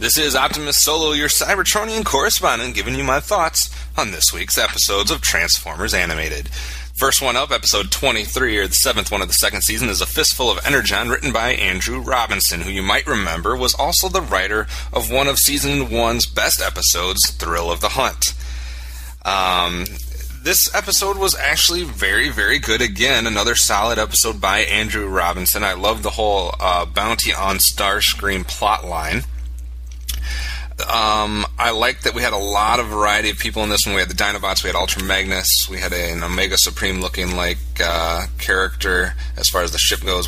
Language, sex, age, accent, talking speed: English, male, 30-49, American, 180 wpm